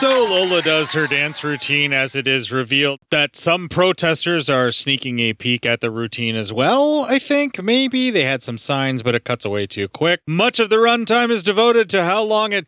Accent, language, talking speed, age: American, English, 215 wpm, 30-49